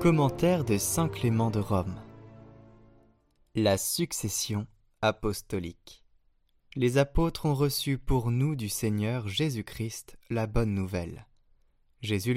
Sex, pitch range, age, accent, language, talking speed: male, 105-135 Hz, 20-39, French, French, 105 wpm